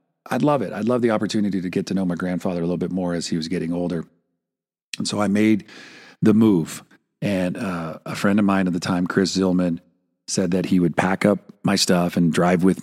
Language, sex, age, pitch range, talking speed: English, male, 40-59, 85-100 Hz, 235 wpm